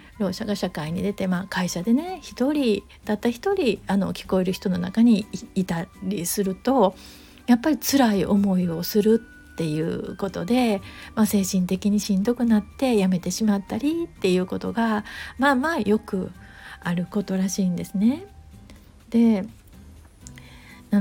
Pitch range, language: 185-245 Hz, Japanese